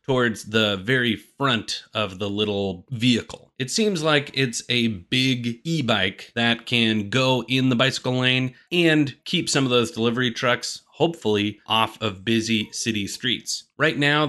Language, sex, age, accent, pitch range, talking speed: English, male, 30-49, American, 110-135 Hz, 155 wpm